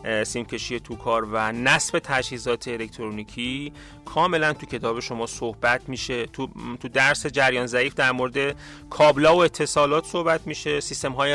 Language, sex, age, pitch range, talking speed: Persian, male, 30-49, 115-150 Hz, 145 wpm